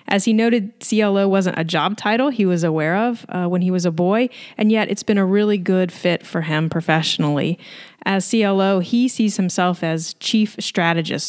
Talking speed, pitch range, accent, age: 195 wpm, 175-210 Hz, American, 30-49